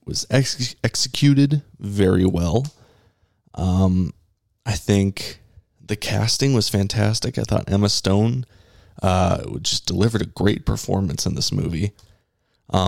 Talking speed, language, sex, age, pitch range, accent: 115 wpm, English, male, 20-39, 100-115 Hz, American